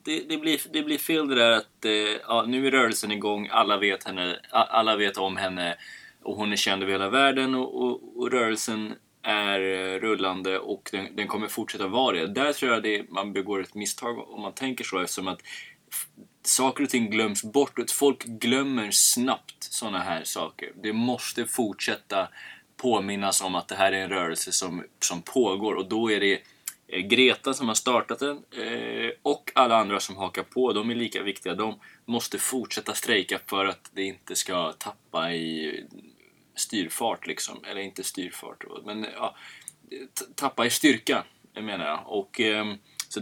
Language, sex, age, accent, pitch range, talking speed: Swedish, male, 20-39, native, 95-125 Hz, 175 wpm